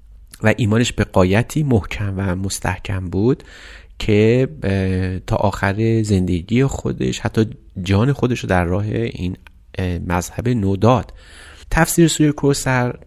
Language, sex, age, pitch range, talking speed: Persian, male, 30-49, 95-120 Hz, 110 wpm